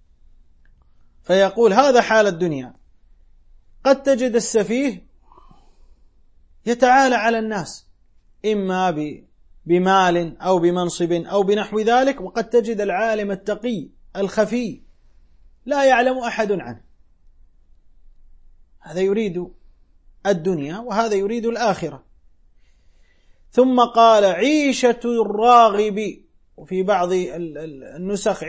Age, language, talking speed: 30-49, Arabic, 80 wpm